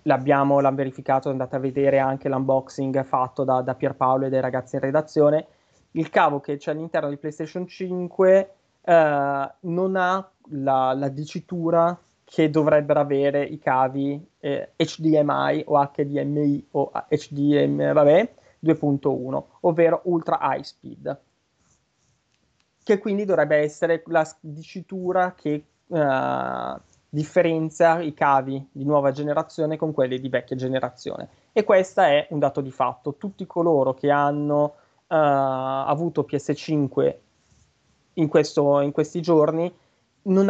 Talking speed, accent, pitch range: 130 wpm, native, 140-160 Hz